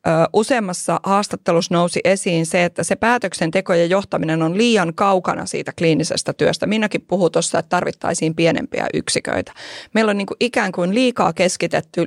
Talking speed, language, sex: 155 wpm, Finnish, female